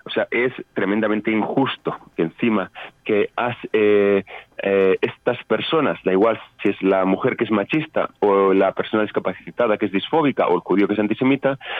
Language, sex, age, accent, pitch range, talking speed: Spanish, male, 30-49, Spanish, 105-140 Hz, 175 wpm